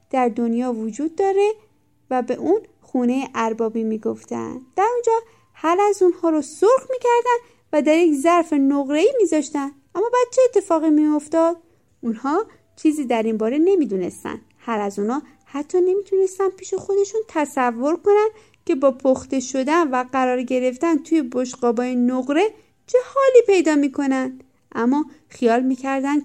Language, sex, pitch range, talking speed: Persian, female, 245-345 Hz, 140 wpm